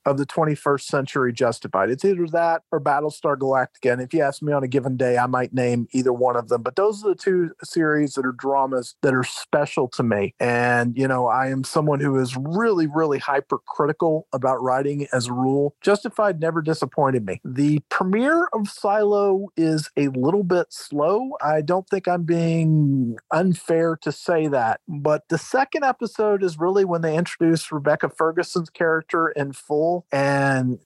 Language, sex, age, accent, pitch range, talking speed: English, male, 40-59, American, 140-175 Hz, 185 wpm